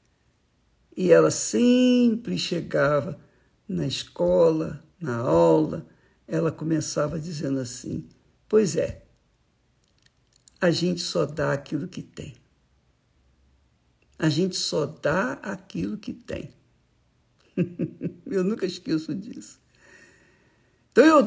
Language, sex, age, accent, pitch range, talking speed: Portuguese, male, 60-79, Brazilian, 165-245 Hz, 95 wpm